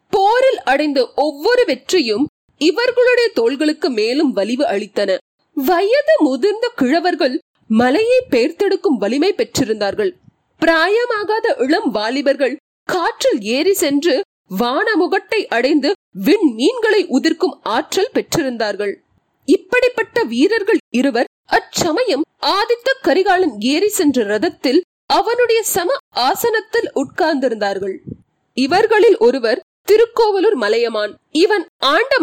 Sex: female